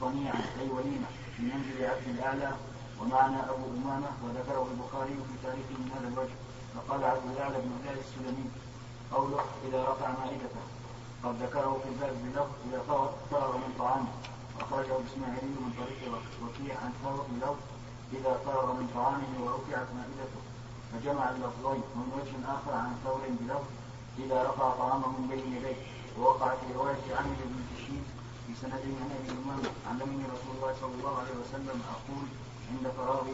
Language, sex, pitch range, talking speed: Arabic, male, 125-135 Hz, 155 wpm